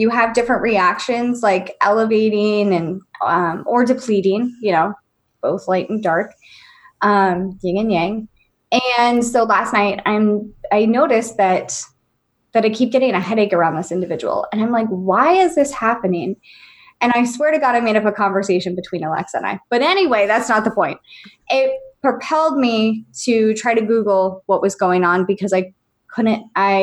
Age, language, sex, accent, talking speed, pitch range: 20-39, English, female, American, 175 wpm, 195-245 Hz